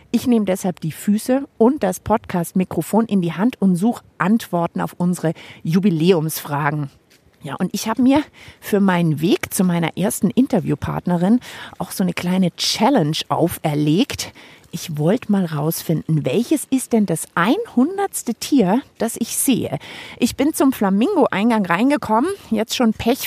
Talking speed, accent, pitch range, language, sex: 145 wpm, German, 180-240 Hz, German, female